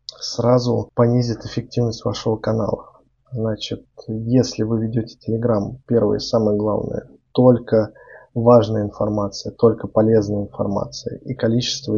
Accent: native